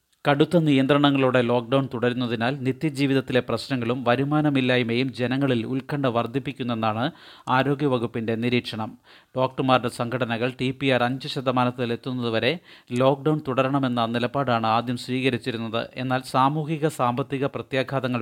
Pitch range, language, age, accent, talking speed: 120-140 Hz, Malayalam, 30-49, native, 90 wpm